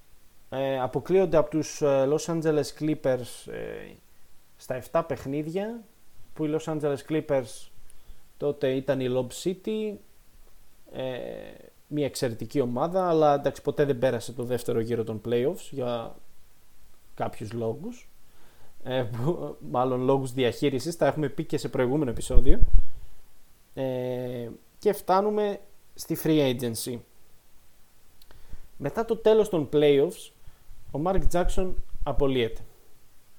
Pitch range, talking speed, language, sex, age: 125-160 Hz, 120 wpm, Greek, male, 20-39